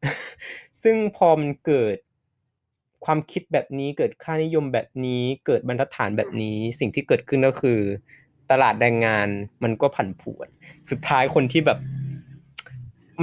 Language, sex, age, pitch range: Thai, male, 20-39, 120-150 Hz